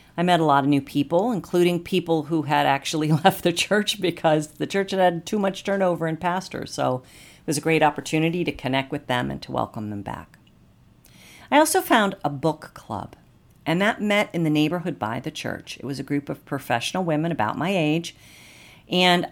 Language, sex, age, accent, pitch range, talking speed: English, female, 50-69, American, 130-170 Hz, 205 wpm